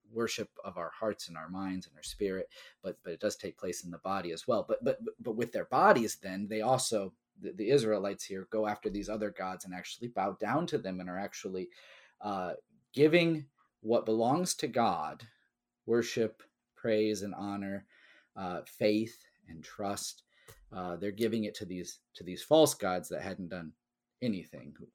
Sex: male